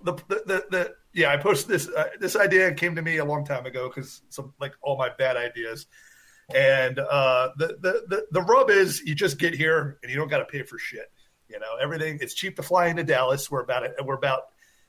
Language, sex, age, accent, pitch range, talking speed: English, male, 30-49, American, 135-185 Hz, 240 wpm